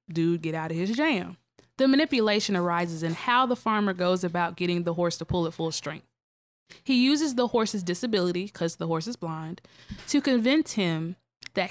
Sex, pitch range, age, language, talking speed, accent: female, 170-230 Hz, 20-39, English, 190 wpm, American